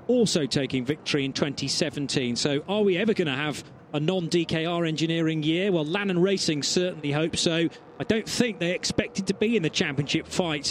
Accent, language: British, English